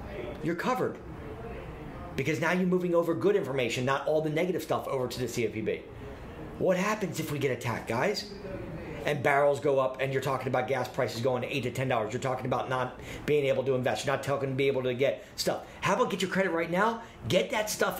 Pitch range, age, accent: 125-160 Hz, 40-59, American